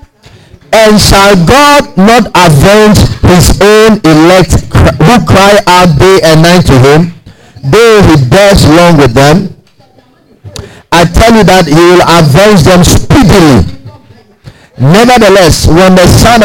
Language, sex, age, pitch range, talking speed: English, male, 50-69, 125-185 Hz, 130 wpm